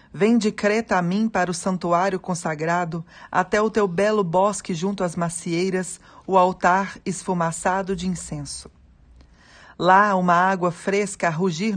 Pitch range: 155-200 Hz